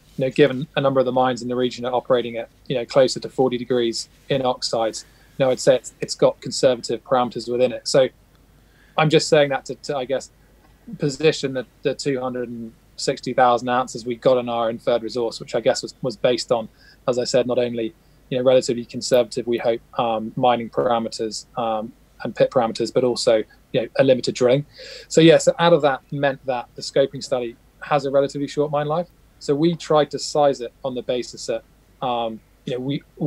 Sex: male